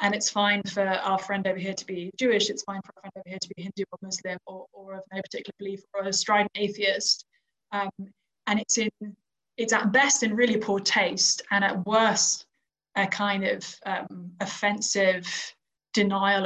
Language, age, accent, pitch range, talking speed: English, 20-39, British, 190-210 Hz, 195 wpm